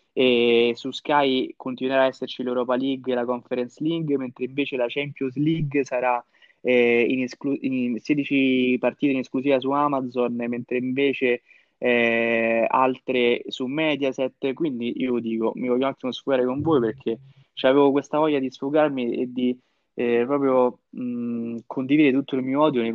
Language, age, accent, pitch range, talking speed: Italian, 20-39, native, 115-135 Hz, 160 wpm